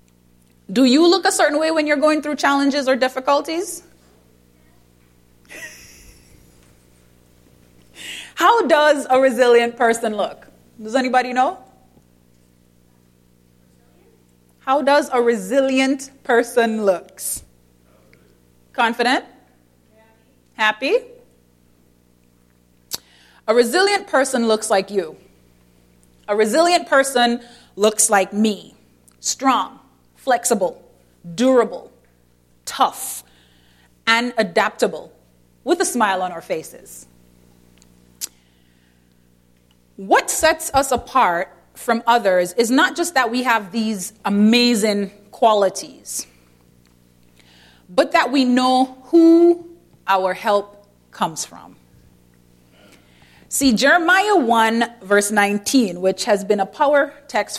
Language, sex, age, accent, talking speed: English, female, 30-49, American, 95 wpm